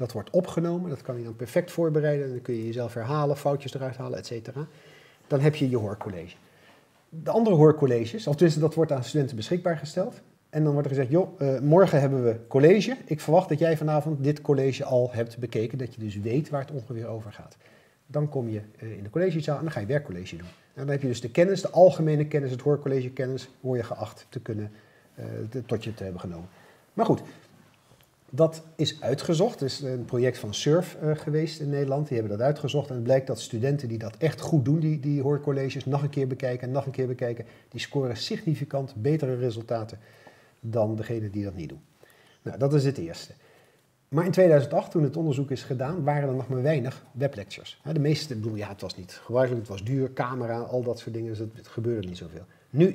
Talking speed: 215 wpm